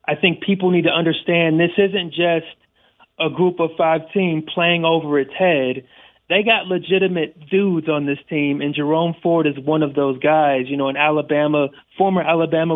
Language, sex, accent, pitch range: English, male, American, 150-175 Hz